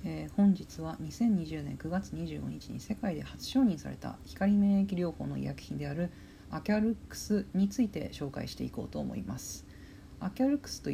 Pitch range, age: 130-195 Hz, 40-59